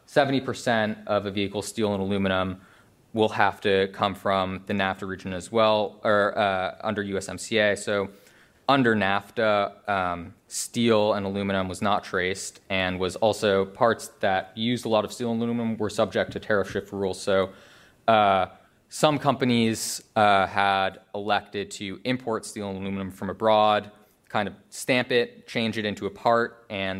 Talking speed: 160 wpm